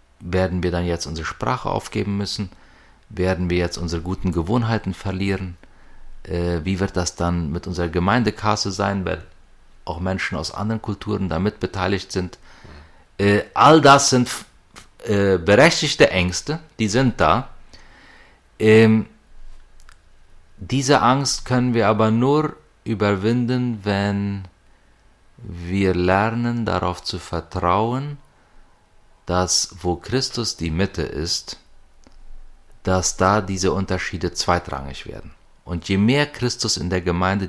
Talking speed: 125 wpm